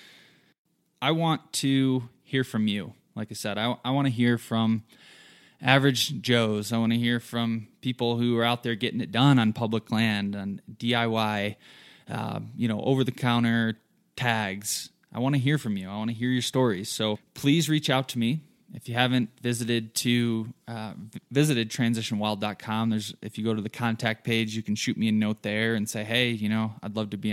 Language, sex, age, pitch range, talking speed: English, male, 20-39, 110-125 Hz, 200 wpm